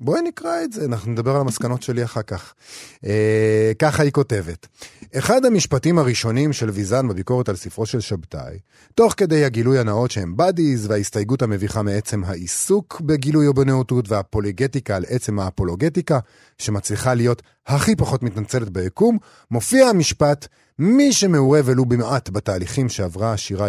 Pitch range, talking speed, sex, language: 100-135 Hz, 145 wpm, male, Hebrew